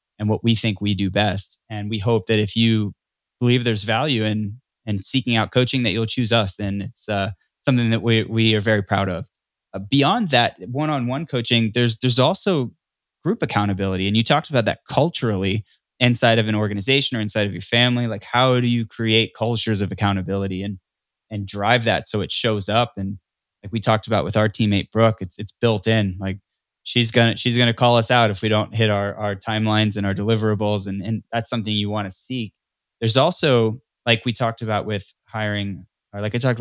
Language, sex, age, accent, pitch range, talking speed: English, male, 20-39, American, 100-120 Hz, 210 wpm